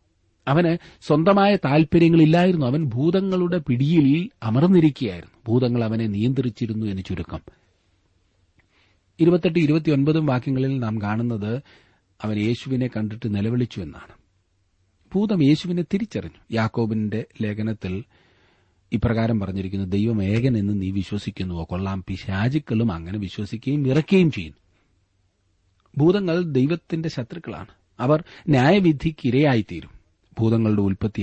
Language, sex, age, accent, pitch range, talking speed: Malayalam, male, 40-59, native, 95-145 Hz, 85 wpm